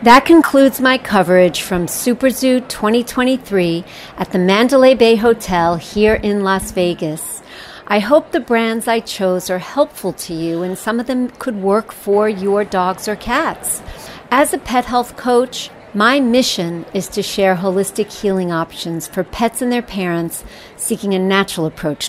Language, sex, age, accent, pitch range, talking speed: English, female, 50-69, American, 180-240 Hz, 160 wpm